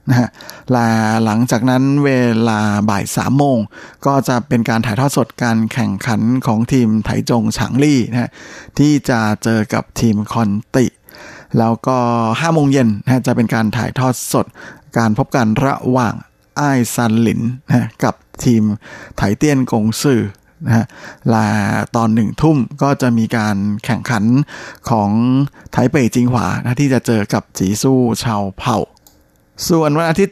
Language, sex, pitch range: Thai, male, 110-135 Hz